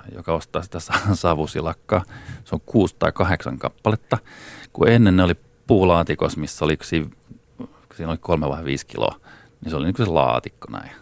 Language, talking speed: Finnish, 160 wpm